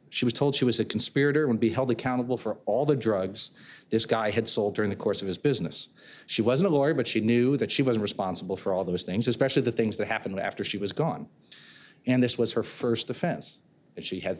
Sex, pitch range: male, 110-135 Hz